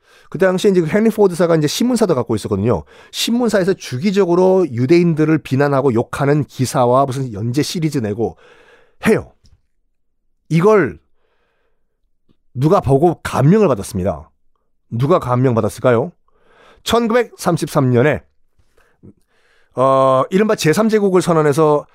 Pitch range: 115-180 Hz